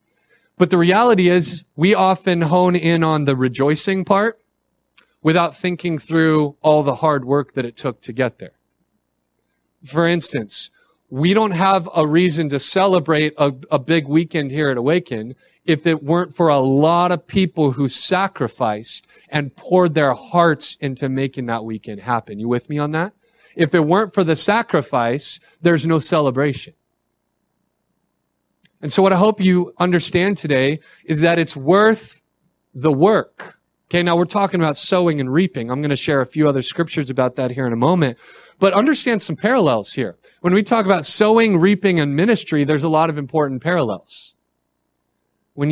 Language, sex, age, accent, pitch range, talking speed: English, male, 40-59, American, 140-180 Hz, 170 wpm